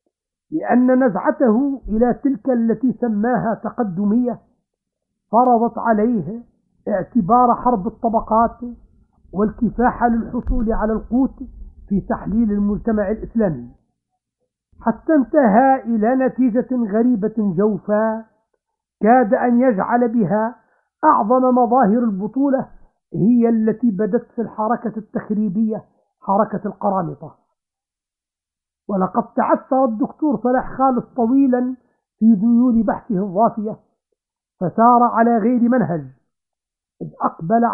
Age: 50-69